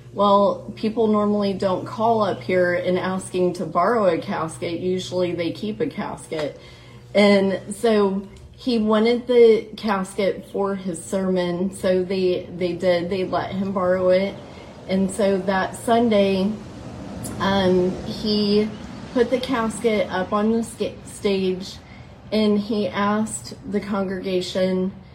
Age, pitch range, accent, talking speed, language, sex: 30-49, 180-210 Hz, American, 130 wpm, English, female